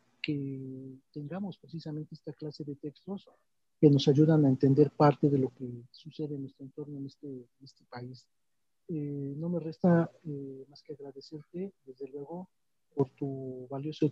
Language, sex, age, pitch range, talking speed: Spanish, male, 50-69, 140-160 Hz, 160 wpm